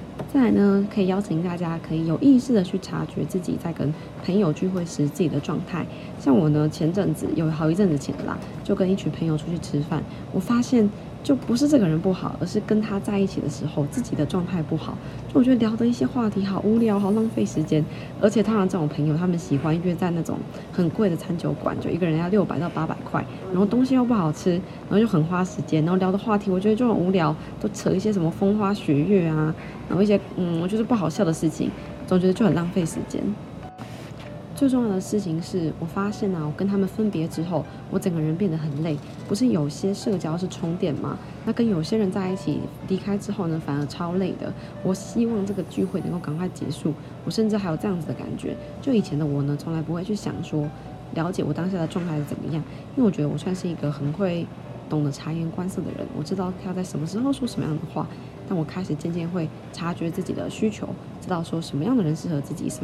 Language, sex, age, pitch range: Chinese, female, 20-39, 155-200 Hz